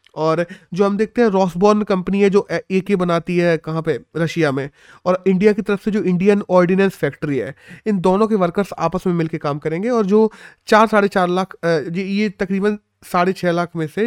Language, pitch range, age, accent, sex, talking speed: Hindi, 150-205 Hz, 30-49, native, male, 210 wpm